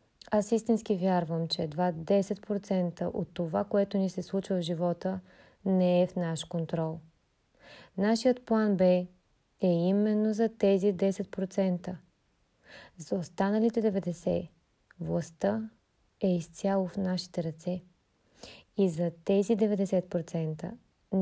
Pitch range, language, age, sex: 175-205 Hz, Bulgarian, 20-39, female